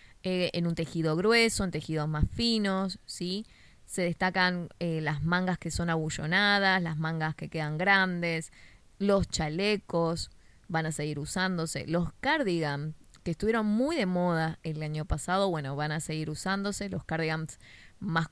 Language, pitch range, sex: Spanish, 160-190 Hz, female